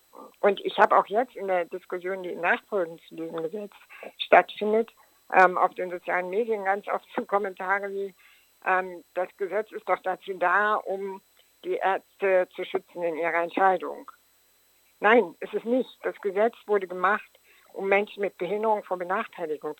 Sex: female